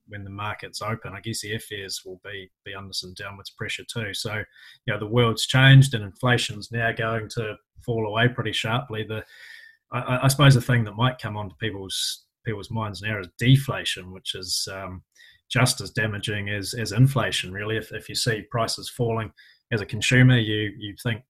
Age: 20-39